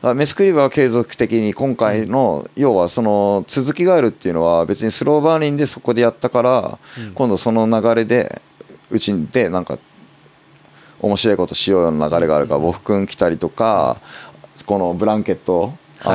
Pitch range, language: 85-125 Hz, Japanese